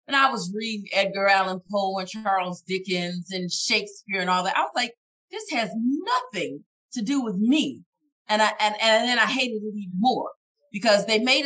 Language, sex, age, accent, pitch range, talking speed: English, female, 30-49, American, 180-225 Hz, 200 wpm